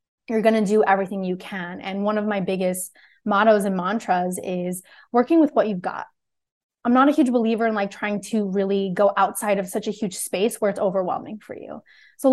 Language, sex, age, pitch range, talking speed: English, female, 20-39, 195-240 Hz, 220 wpm